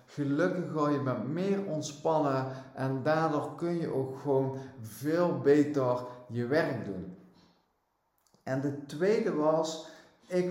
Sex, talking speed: male, 125 wpm